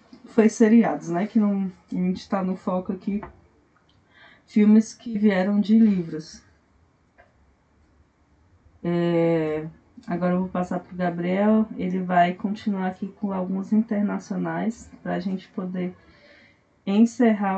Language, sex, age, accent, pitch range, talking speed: Portuguese, female, 20-39, Brazilian, 190-240 Hz, 125 wpm